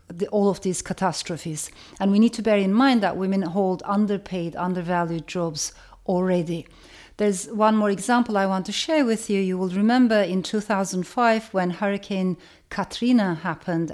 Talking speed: 160 wpm